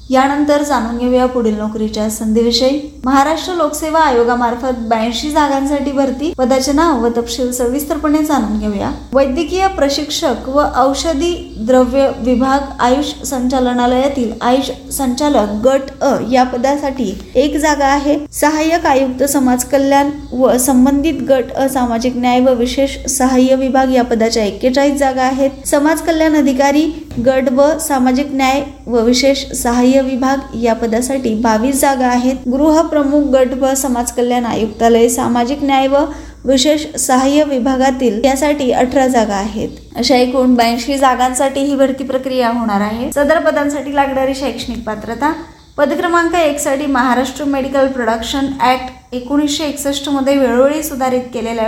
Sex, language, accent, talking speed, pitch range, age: female, Marathi, native, 125 wpm, 245-280 Hz, 20-39